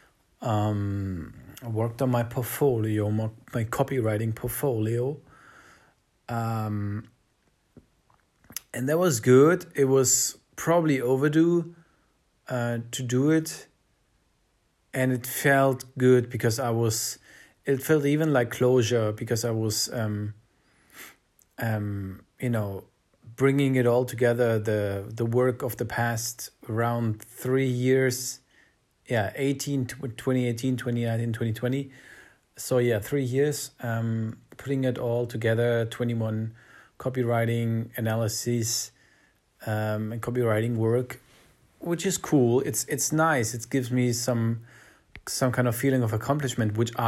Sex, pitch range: male, 110-130 Hz